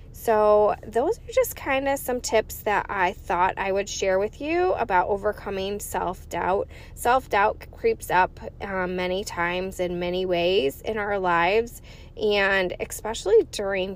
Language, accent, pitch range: English, American, 185-240 Hz